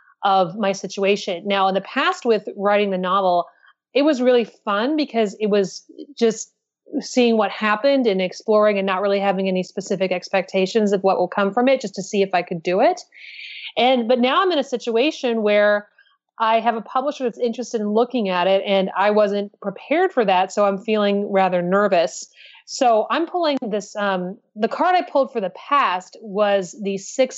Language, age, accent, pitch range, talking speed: English, 30-49, American, 195-245 Hz, 195 wpm